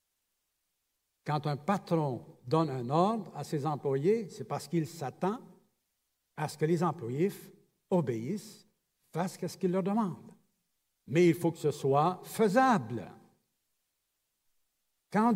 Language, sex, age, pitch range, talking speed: French, male, 70-89, 140-190 Hz, 130 wpm